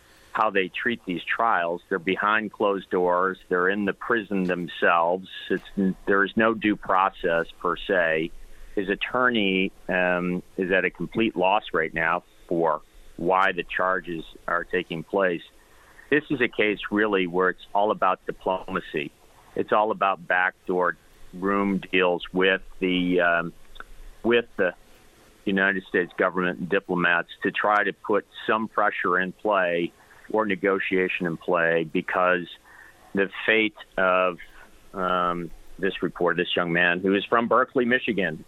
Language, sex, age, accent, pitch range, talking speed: English, male, 50-69, American, 85-100 Hz, 145 wpm